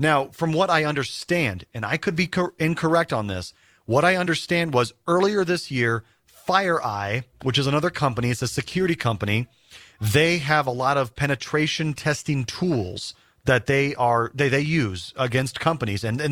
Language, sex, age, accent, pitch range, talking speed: English, male, 30-49, American, 120-165 Hz, 175 wpm